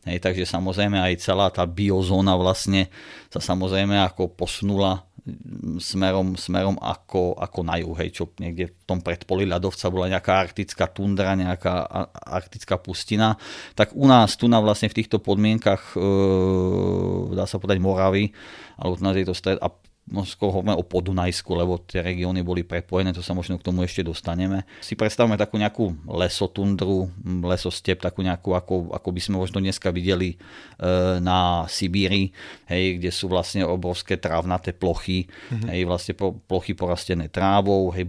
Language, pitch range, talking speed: Czech, 90-95 Hz, 145 wpm